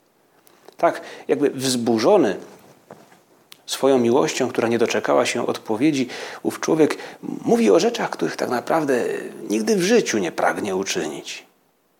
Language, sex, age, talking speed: Polish, male, 40-59, 120 wpm